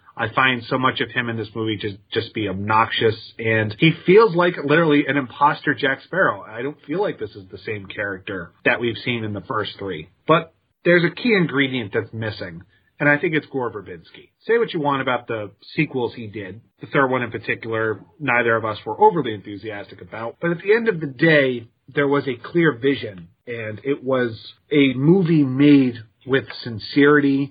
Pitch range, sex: 115-150 Hz, male